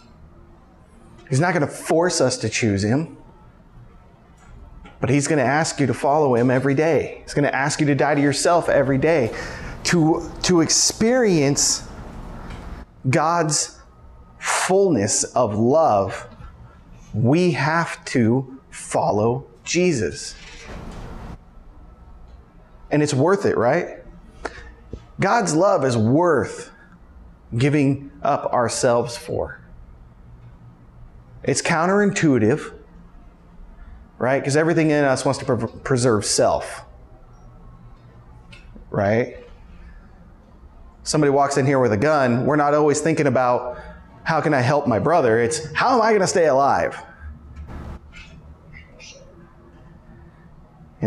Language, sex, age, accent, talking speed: English, male, 30-49, American, 110 wpm